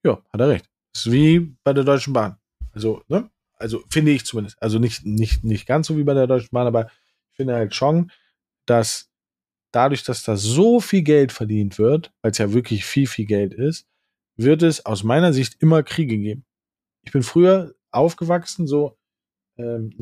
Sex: male